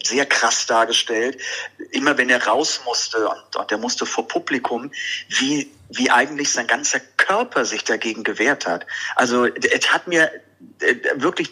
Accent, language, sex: German, German, male